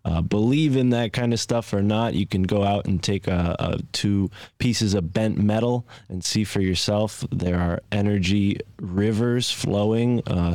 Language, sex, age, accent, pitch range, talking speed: English, male, 20-39, American, 90-110 Hz, 180 wpm